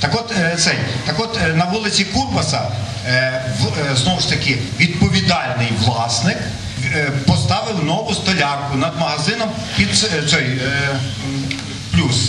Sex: male